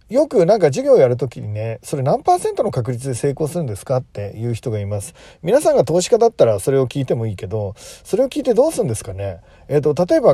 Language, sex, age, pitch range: Japanese, male, 40-59, 110-170 Hz